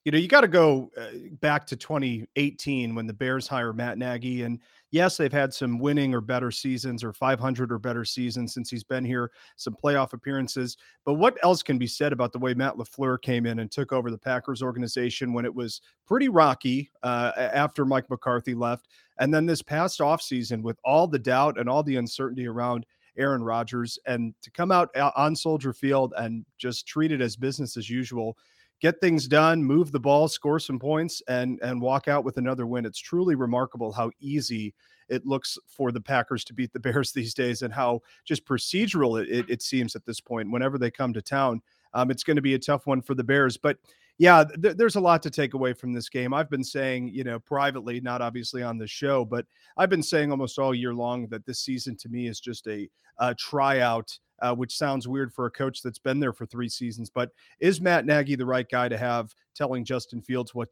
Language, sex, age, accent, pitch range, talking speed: English, male, 30-49, American, 120-140 Hz, 215 wpm